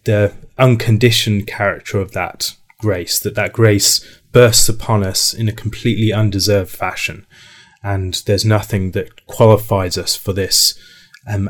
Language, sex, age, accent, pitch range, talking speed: English, male, 30-49, British, 100-115 Hz, 135 wpm